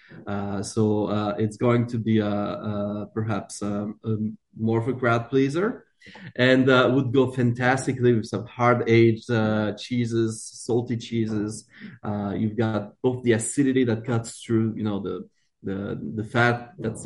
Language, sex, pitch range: English, male, 105-125 Hz